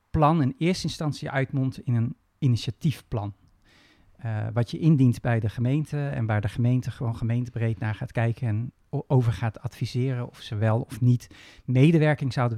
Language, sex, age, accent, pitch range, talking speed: English, male, 40-59, Dutch, 115-135 Hz, 165 wpm